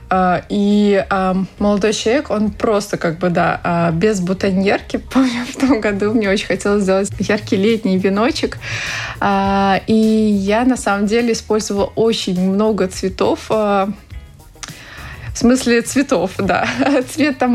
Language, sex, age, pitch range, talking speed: Russian, female, 20-39, 195-245 Hz, 125 wpm